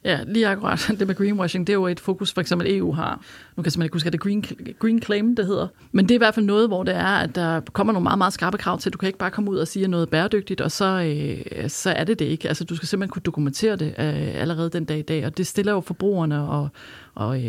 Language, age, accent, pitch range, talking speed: Danish, 30-49, native, 165-200 Hz, 290 wpm